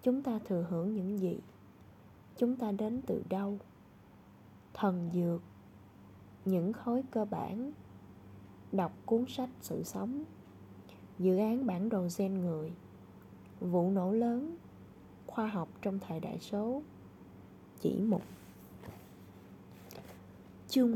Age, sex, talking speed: 20-39, female, 115 wpm